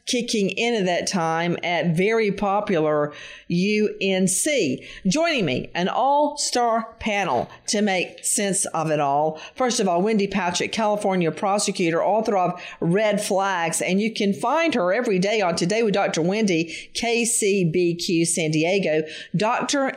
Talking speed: 140 wpm